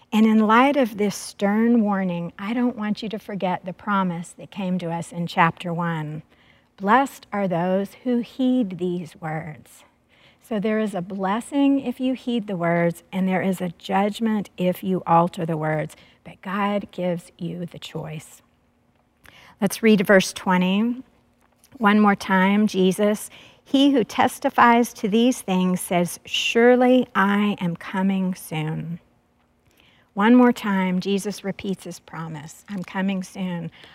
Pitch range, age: 180-215 Hz, 50-69